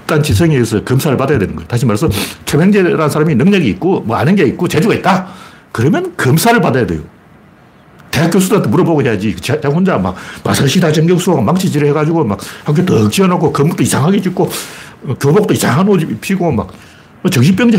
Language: Korean